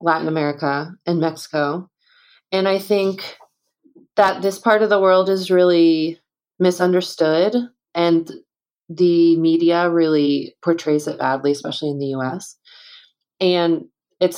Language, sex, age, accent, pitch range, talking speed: English, female, 20-39, American, 160-195 Hz, 125 wpm